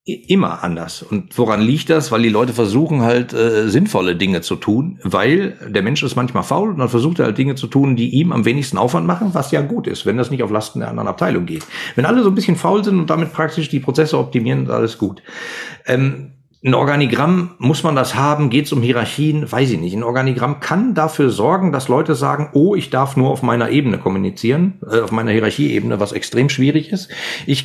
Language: German